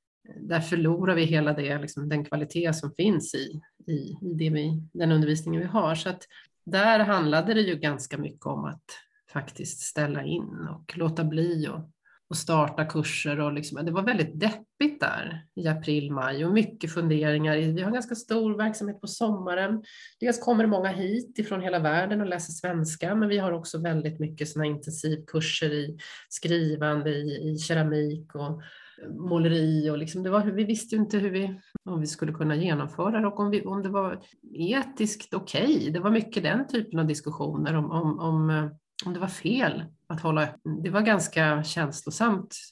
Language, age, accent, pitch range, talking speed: Swedish, 30-49, native, 155-205 Hz, 180 wpm